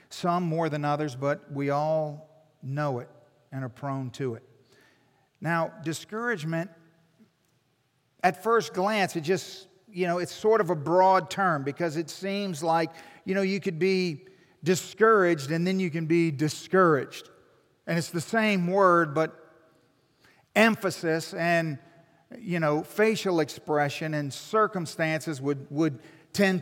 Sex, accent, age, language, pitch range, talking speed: male, American, 50-69, English, 145-185 Hz, 140 wpm